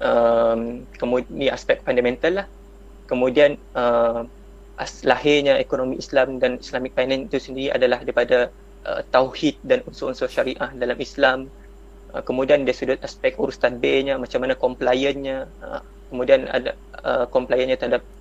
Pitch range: 130-170 Hz